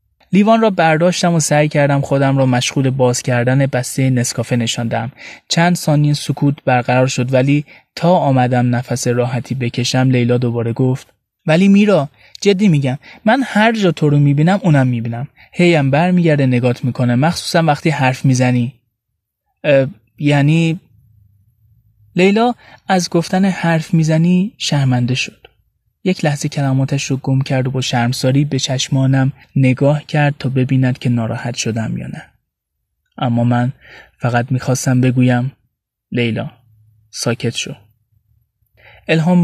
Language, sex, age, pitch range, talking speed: Persian, male, 20-39, 125-150 Hz, 130 wpm